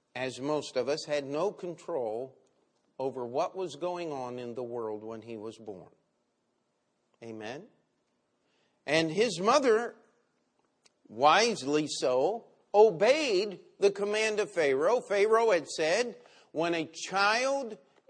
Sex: male